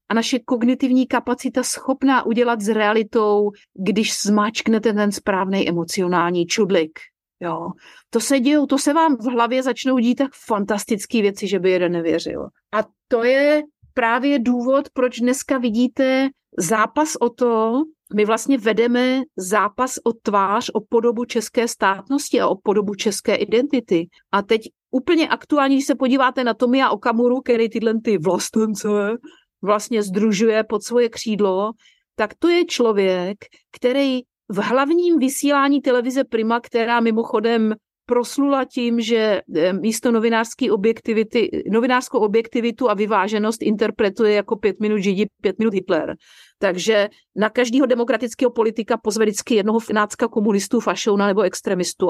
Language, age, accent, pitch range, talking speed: Czech, 50-69, native, 210-250 Hz, 135 wpm